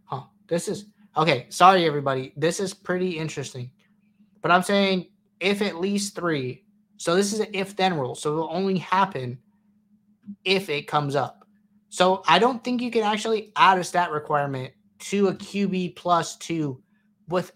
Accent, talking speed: American, 165 wpm